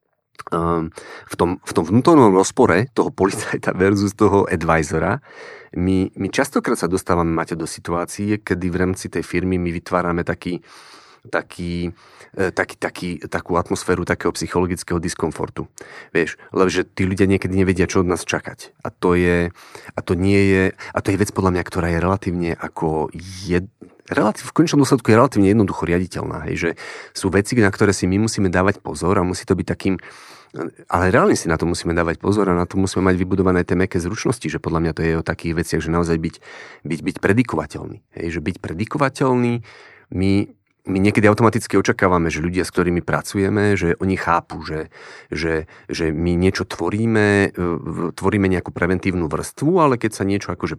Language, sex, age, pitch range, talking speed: Slovak, male, 30-49, 85-100 Hz, 175 wpm